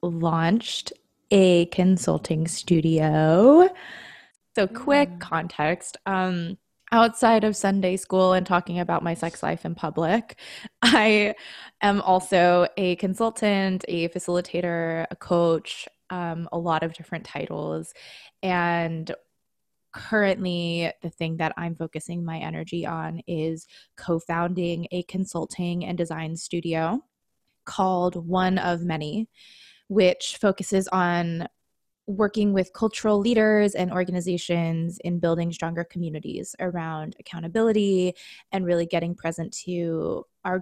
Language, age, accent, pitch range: English, 20-39, American, 165-195 Hz